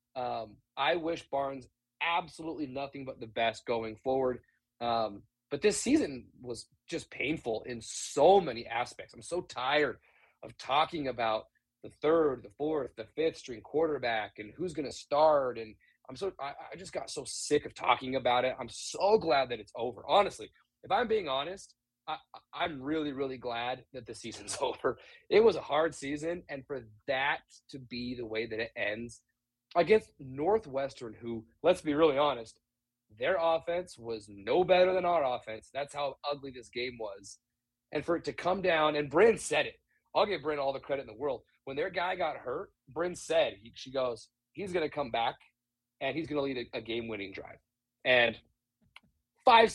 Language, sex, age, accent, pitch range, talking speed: English, male, 30-49, American, 120-165 Hz, 180 wpm